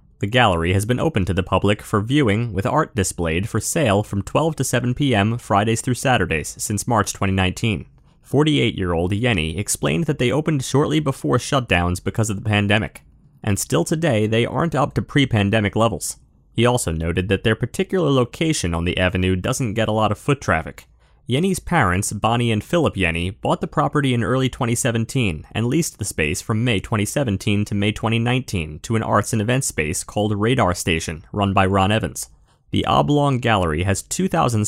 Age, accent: 30-49, American